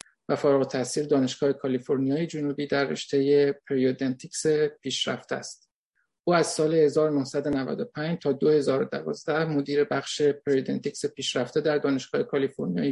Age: 50-69